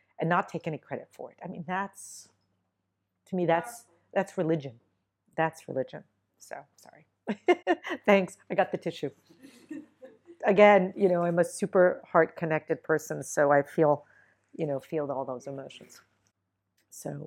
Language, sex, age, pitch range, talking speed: English, female, 40-59, 135-175 Hz, 145 wpm